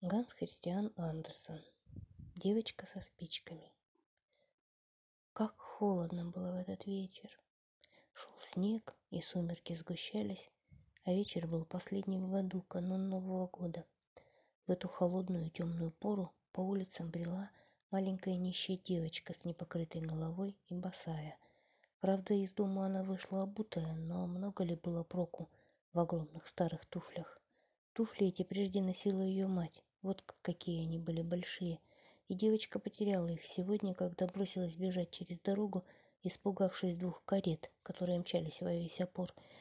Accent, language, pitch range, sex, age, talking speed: native, Russian, 170-195 Hz, female, 20-39, 130 wpm